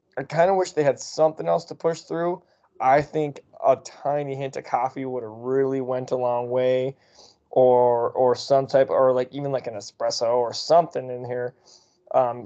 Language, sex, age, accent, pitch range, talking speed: English, male, 20-39, American, 125-155 Hz, 195 wpm